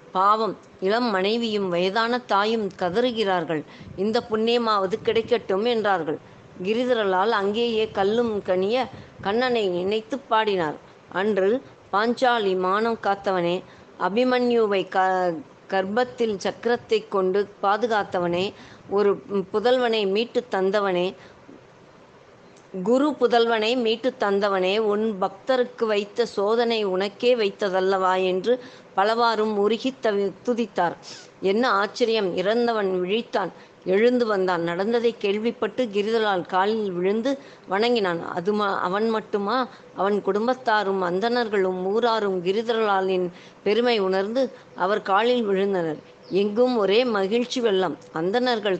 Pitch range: 190-235 Hz